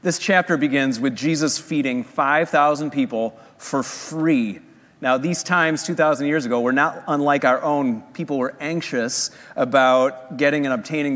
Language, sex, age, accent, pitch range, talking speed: English, male, 30-49, American, 150-205 Hz, 150 wpm